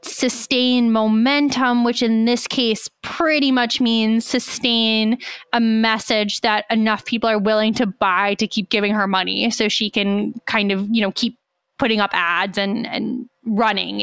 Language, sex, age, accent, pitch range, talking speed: English, female, 20-39, American, 210-250 Hz, 165 wpm